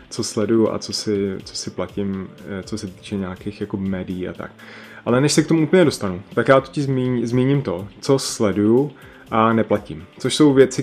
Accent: native